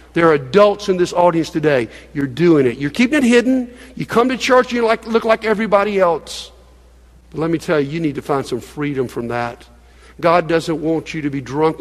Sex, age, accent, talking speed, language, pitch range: male, 50-69, American, 230 wpm, English, 135-195 Hz